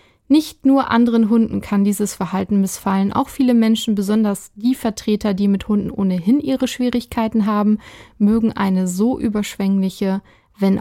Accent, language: German, German